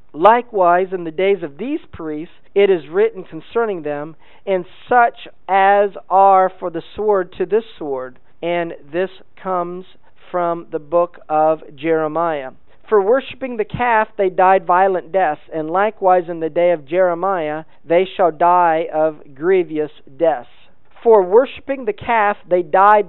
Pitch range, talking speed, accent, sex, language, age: 165-200 Hz, 150 wpm, American, male, English, 50-69